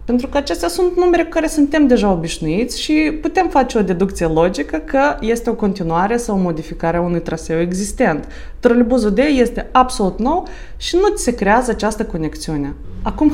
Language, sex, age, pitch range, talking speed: Romanian, female, 20-39, 180-260 Hz, 175 wpm